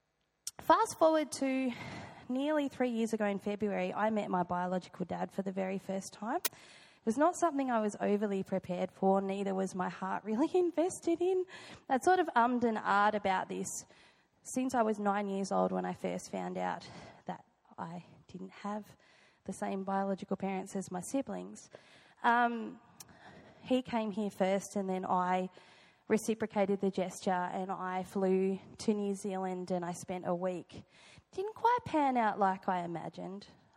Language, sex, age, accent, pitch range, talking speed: English, female, 20-39, Australian, 185-230 Hz, 165 wpm